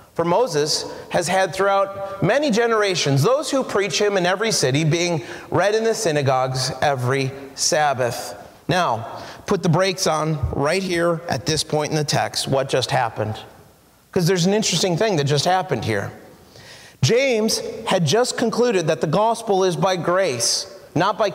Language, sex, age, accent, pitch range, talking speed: English, male, 40-59, American, 170-220 Hz, 160 wpm